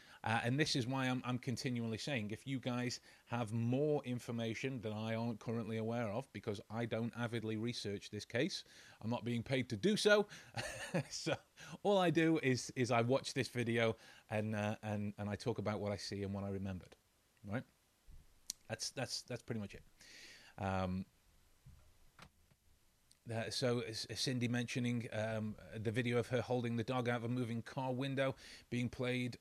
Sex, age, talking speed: male, 30-49, 180 wpm